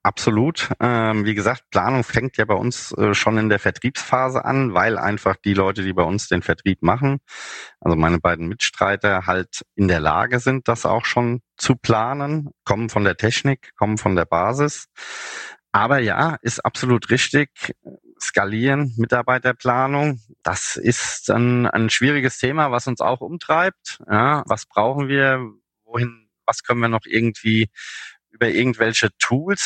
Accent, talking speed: German, 150 wpm